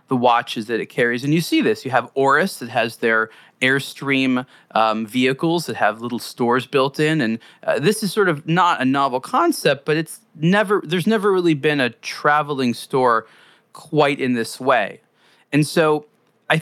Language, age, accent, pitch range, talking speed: English, 30-49, American, 125-170 Hz, 185 wpm